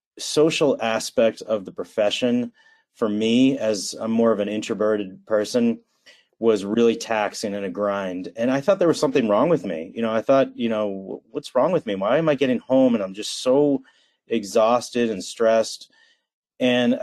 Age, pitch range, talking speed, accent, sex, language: 30-49, 105-125 Hz, 195 wpm, American, male, English